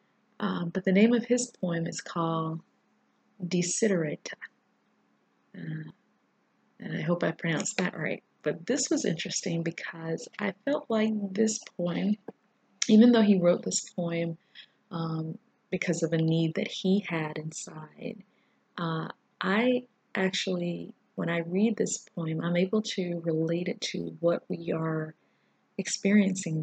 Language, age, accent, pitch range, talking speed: English, 30-49, American, 160-195 Hz, 135 wpm